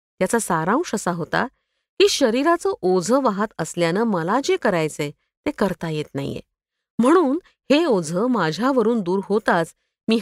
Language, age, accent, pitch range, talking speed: Marathi, 50-69, native, 170-270 Hz, 135 wpm